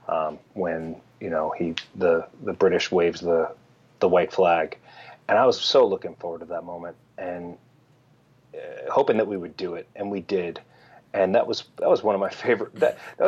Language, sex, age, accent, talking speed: English, male, 30-49, American, 200 wpm